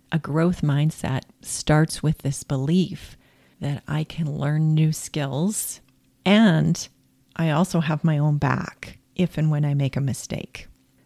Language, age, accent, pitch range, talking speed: English, 40-59, American, 150-175 Hz, 145 wpm